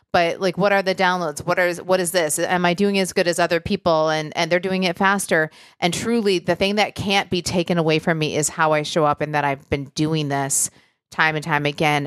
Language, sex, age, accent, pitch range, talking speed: English, female, 30-49, American, 160-210 Hz, 255 wpm